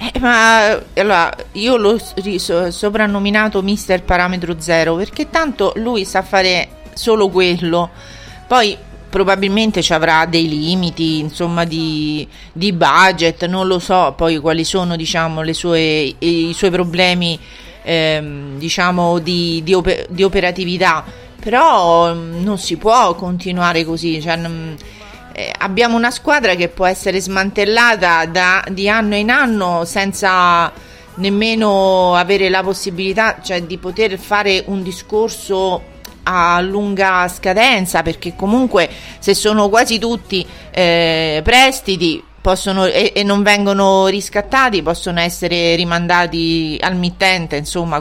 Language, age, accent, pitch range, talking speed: Italian, 40-59, native, 170-200 Hz, 125 wpm